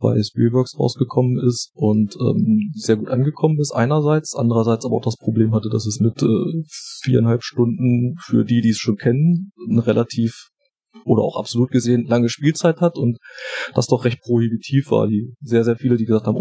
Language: German